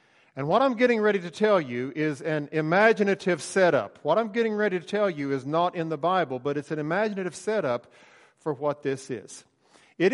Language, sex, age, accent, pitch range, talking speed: English, male, 50-69, American, 130-165 Hz, 200 wpm